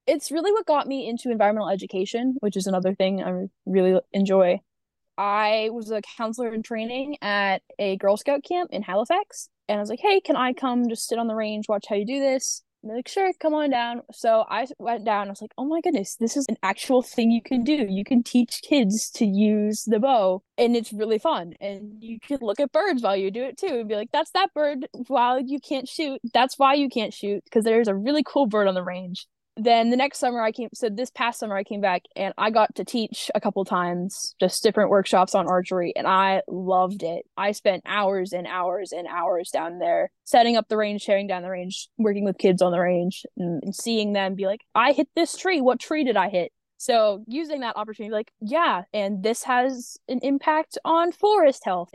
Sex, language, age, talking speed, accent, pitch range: female, English, 10-29, 230 wpm, American, 200-265 Hz